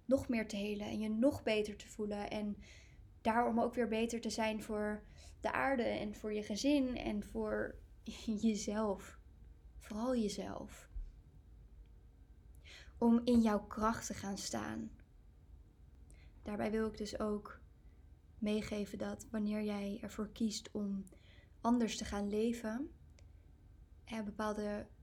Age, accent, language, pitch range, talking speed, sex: 20-39, Dutch, Dutch, 175-225 Hz, 125 wpm, female